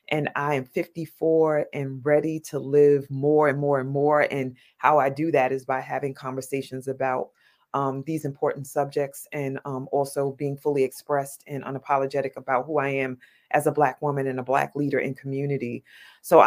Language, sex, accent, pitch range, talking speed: English, female, American, 140-160 Hz, 180 wpm